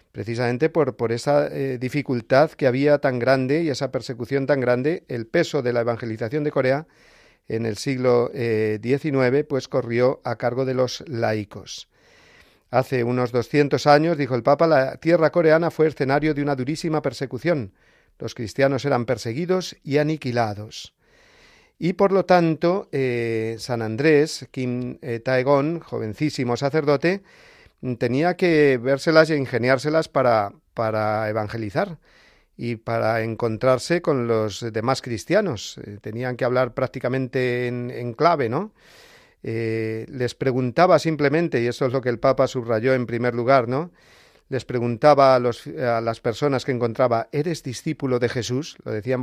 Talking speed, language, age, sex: 150 wpm, Spanish, 40-59, male